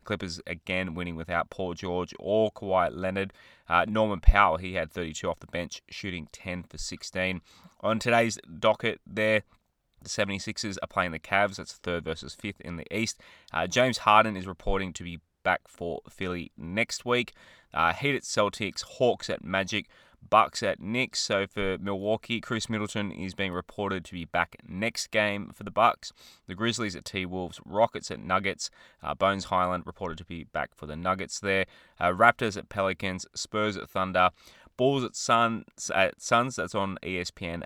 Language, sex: English, male